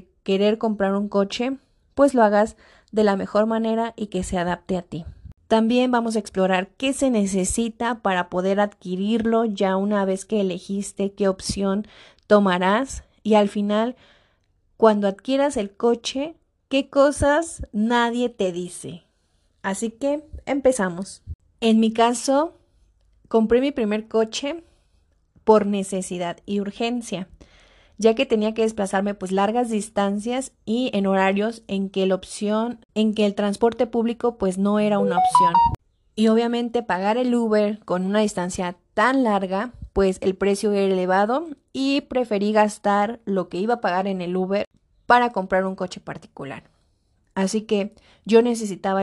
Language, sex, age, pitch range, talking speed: Spanish, female, 30-49, 195-235 Hz, 145 wpm